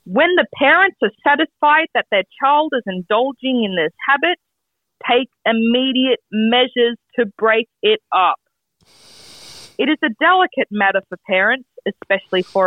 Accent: Australian